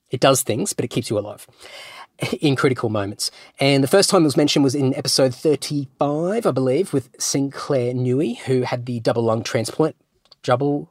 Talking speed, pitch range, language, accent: 185 wpm, 115-145 Hz, English, Australian